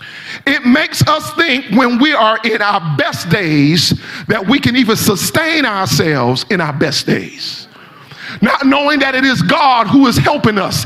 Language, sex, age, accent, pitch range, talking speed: English, male, 40-59, American, 230-310 Hz, 170 wpm